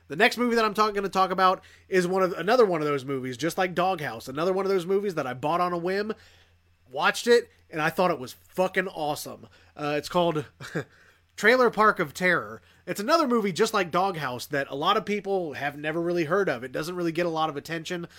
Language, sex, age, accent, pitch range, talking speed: English, male, 30-49, American, 130-190 Hz, 240 wpm